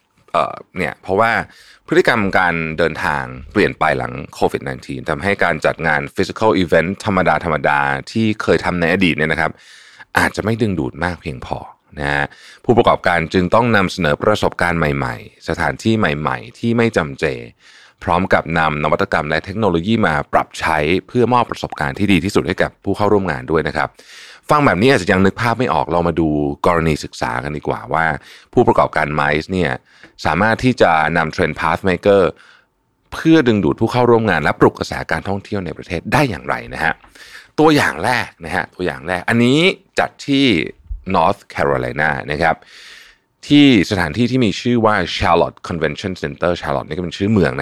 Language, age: Thai, 30-49